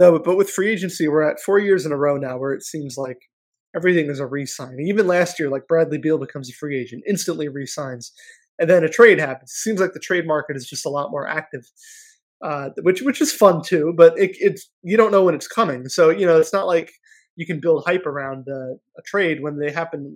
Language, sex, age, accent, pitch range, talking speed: English, male, 20-39, American, 150-190 Hz, 245 wpm